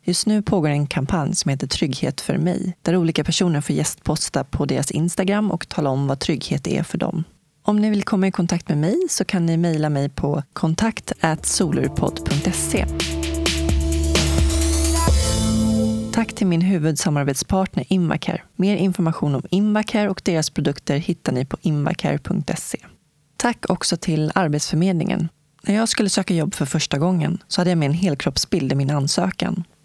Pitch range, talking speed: 145-185 Hz, 160 wpm